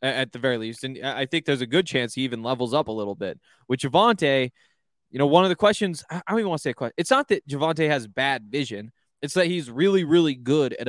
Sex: male